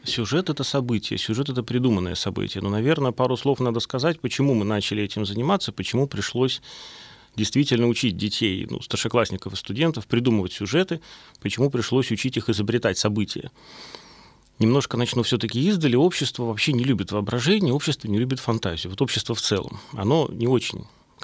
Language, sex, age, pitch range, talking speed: Russian, male, 30-49, 110-140 Hz, 155 wpm